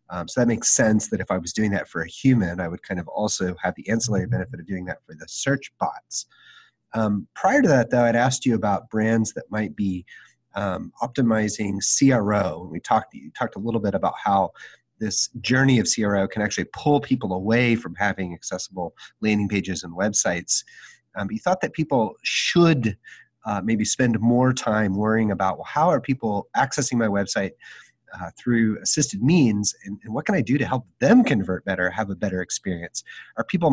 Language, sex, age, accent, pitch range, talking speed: English, male, 30-49, American, 100-125 Hz, 200 wpm